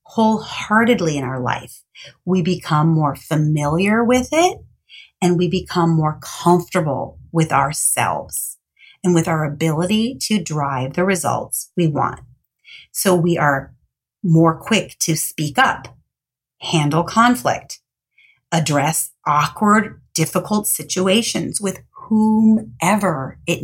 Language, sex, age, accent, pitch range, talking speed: English, female, 30-49, American, 145-190 Hz, 110 wpm